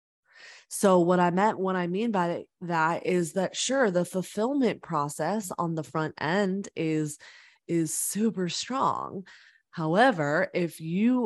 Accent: American